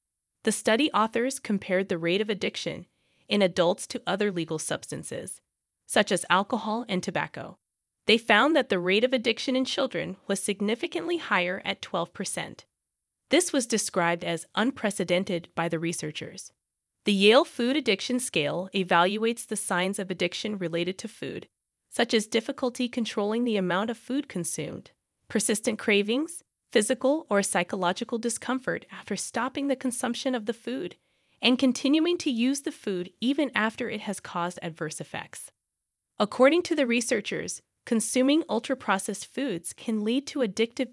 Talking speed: 145 wpm